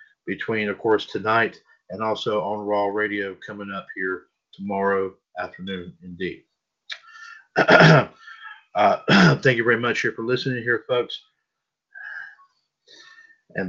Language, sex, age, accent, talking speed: English, male, 40-59, American, 115 wpm